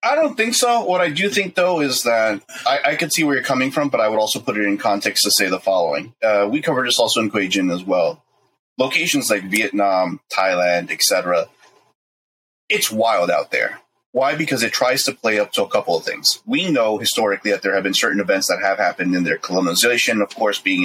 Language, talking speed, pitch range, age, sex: English, 225 wpm, 100-145 Hz, 30-49, male